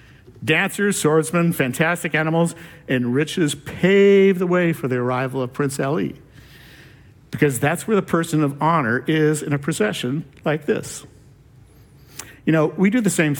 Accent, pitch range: American, 130-170 Hz